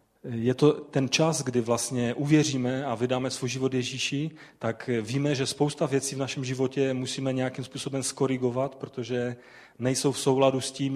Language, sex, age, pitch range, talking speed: Czech, male, 30-49, 125-140 Hz, 165 wpm